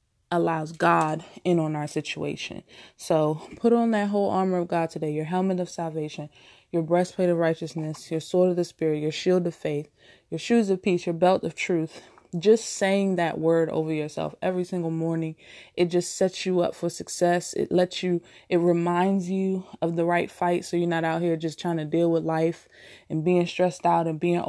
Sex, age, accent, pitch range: female, 20-39, American, 165-180 Hz